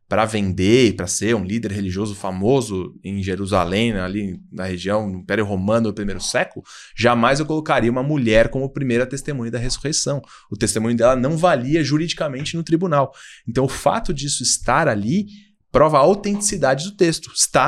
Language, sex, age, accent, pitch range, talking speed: Portuguese, male, 20-39, Brazilian, 110-150 Hz, 175 wpm